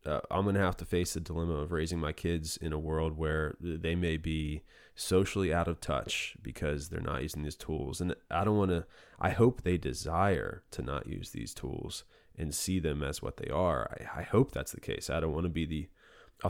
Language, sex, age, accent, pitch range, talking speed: English, male, 20-39, American, 80-105 Hz, 230 wpm